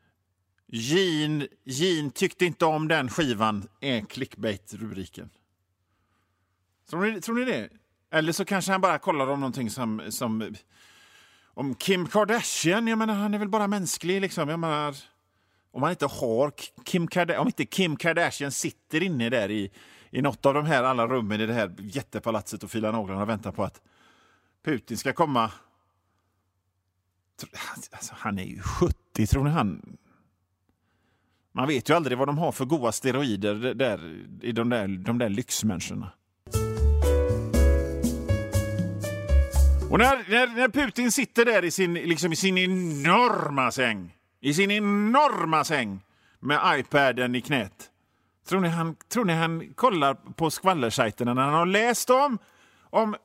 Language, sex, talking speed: Swedish, male, 150 wpm